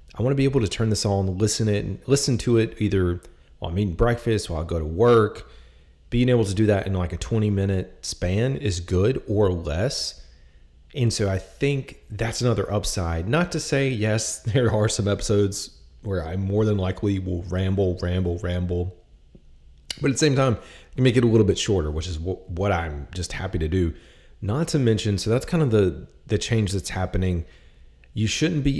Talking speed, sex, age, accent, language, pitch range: 205 wpm, male, 30-49, American, English, 90-110 Hz